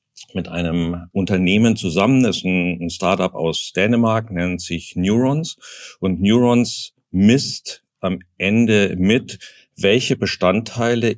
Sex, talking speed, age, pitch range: male, 115 wpm, 50-69, 90-115 Hz